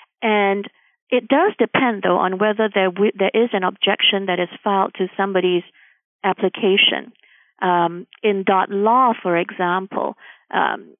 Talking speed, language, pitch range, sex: 140 wpm, English, 185-220 Hz, female